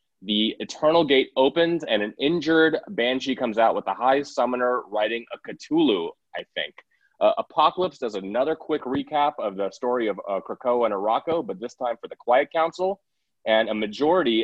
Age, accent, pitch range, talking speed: 30-49, American, 105-135 Hz, 180 wpm